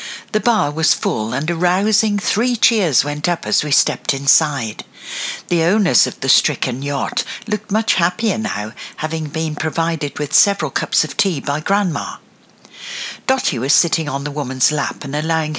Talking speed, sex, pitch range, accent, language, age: 170 wpm, female, 150-210 Hz, British, English, 60-79